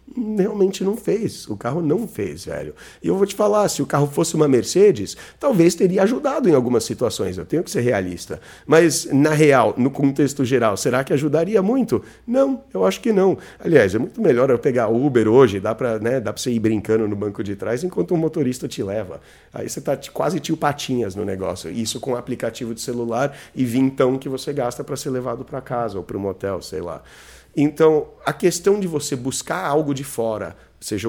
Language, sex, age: Portuguese, male, 40-59